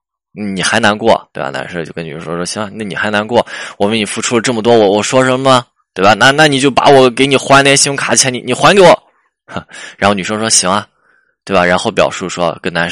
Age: 20-39